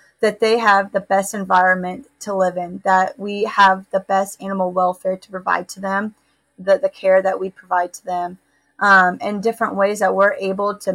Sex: female